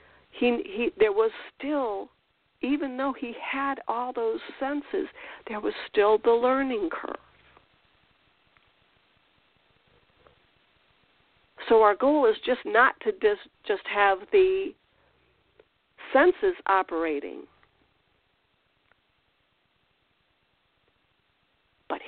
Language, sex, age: English, female, 50-69